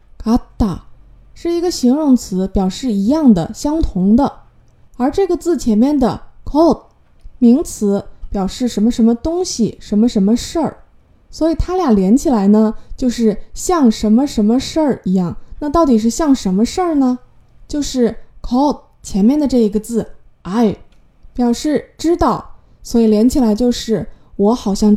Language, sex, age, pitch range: Chinese, female, 20-39, 215-310 Hz